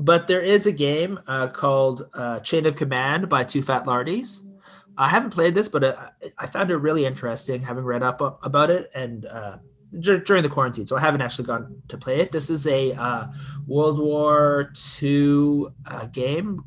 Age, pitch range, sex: 30-49, 130-165 Hz, male